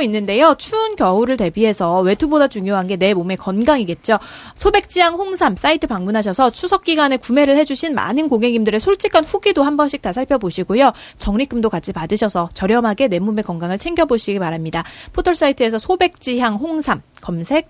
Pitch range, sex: 195-305 Hz, female